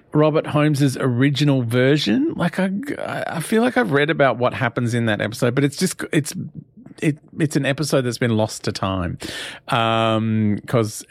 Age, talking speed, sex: 40-59, 175 wpm, male